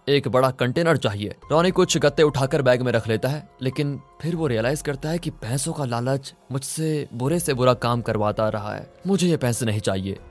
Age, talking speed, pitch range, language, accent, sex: 20-39, 210 wpm, 110-150 Hz, Hindi, native, male